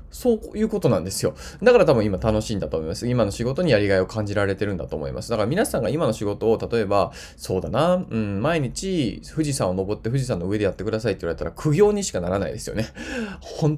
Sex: male